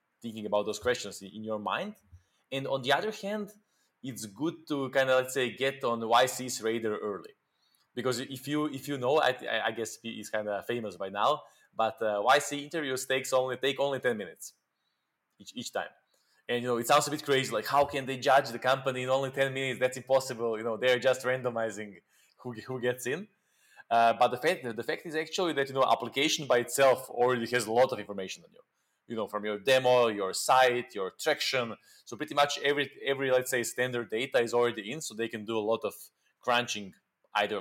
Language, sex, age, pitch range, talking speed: English, male, 20-39, 110-135 Hz, 215 wpm